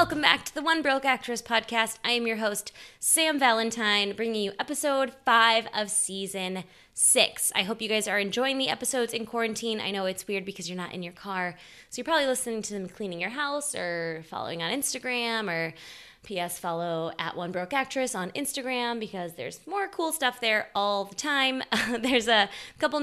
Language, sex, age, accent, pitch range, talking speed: English, female, 20-39, American, 190-250 Hz, 195 wpm